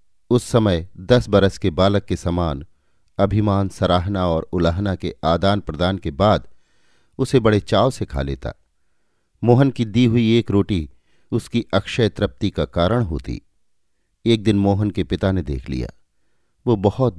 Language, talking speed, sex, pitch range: Hindi, 155 wpm, male, 85-115 Hz